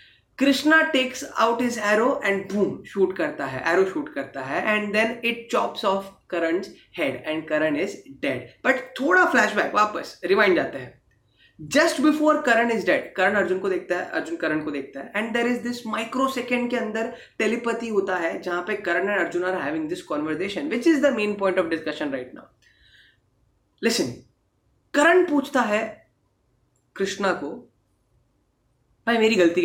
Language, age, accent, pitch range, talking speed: Hindi, 20-39, native, 170-235 Hz, 165 wpm